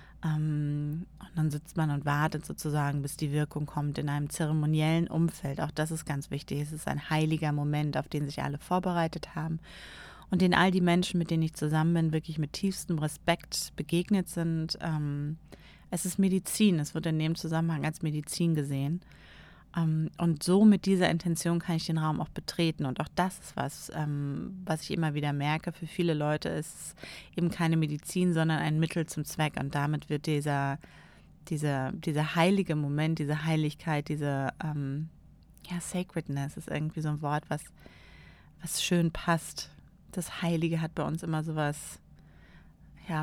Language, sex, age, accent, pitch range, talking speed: German, female, 30-49, German, 145-165 Hz, 170 wpm